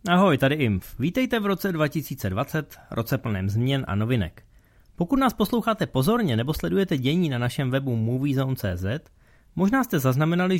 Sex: male